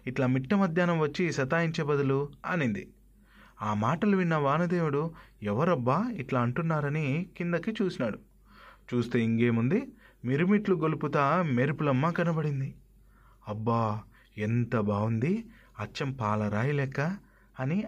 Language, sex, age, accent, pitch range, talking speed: Telugu, male, 30-49, native, 125-185 Hz, 90 wpm